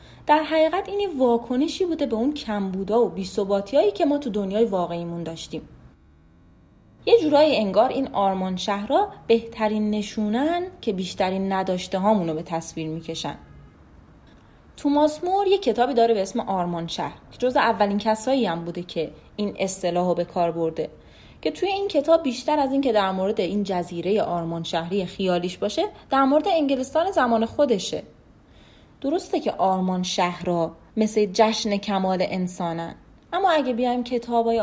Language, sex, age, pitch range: Persian, female, 30-49, 185-275 Hz